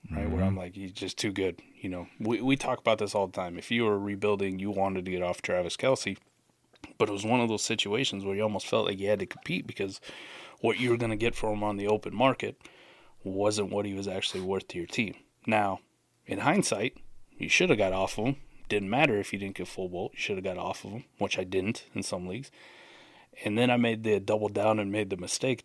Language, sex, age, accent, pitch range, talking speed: English, male, 30-49, American, 95-115 Hz, 255 wpm